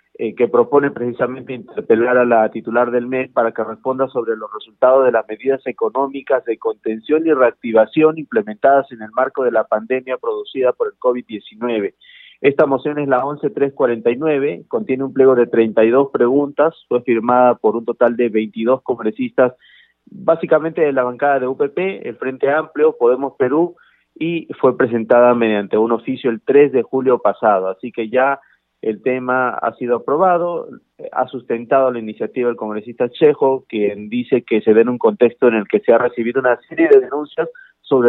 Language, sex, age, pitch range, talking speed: Spanish, male, 40-59, 120-150 Hz, 170 wpm